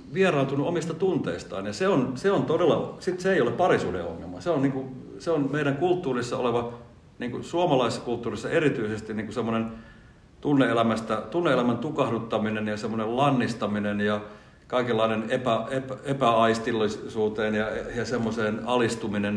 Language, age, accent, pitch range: Finnish, 50-69, native, 110-140 Hz